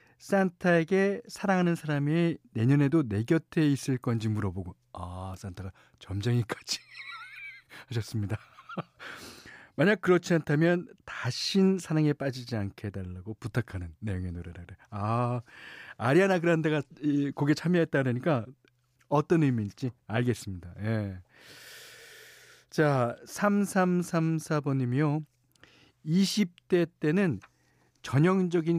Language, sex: Korean, male